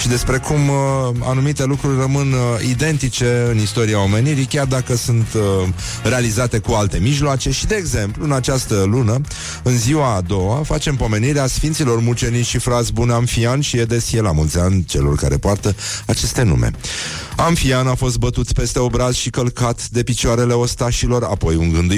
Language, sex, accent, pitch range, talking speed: Romanian, male, native, 110-125 Hz, 160 wpm